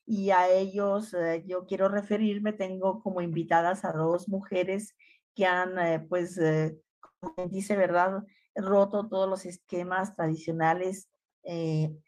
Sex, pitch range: female, 165-205 Hz